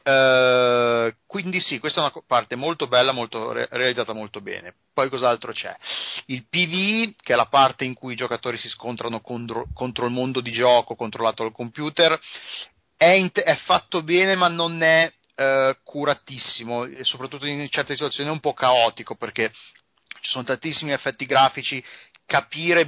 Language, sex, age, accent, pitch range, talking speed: Italian, male, 30-49, native, 120-150 Hz, 155 wpm